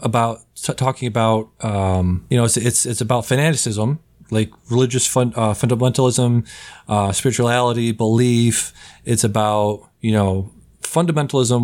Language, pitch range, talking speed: English, 105-120 Hz, 130 wpm